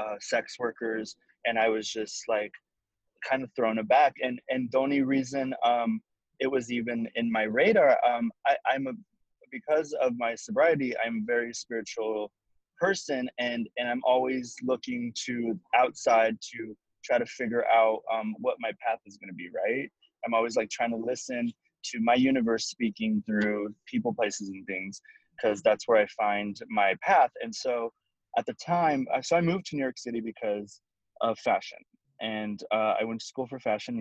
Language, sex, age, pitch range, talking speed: English, male, 20-39, 110-160 Hz, 180 wpm